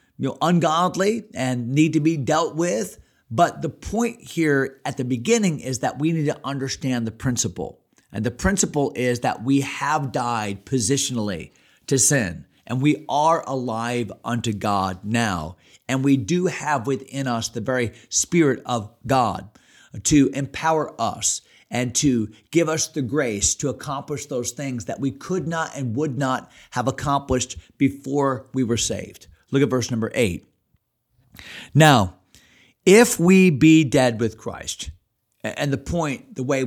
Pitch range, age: 115-150 Hz, 40-59